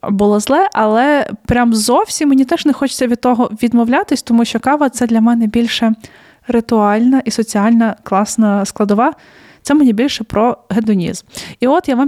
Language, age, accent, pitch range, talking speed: Ukrainian, 20-39, native, 215-250 Hz, 170 wpm